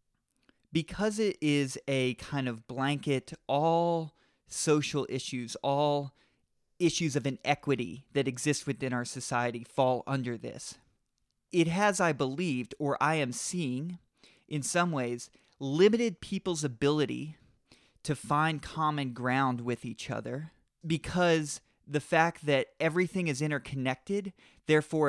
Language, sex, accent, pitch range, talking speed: English, male, American, 125-155 Hz, 120 wpm